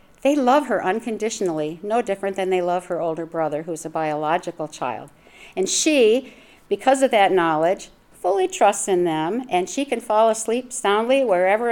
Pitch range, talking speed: 160-210 Hz, 170 wpm